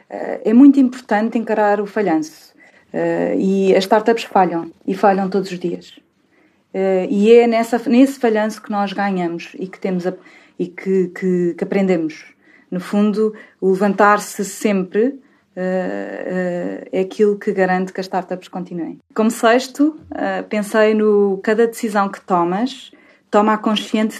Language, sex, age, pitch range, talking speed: Portuguese, female, 20-39, 185-240 Hz, 125 wpm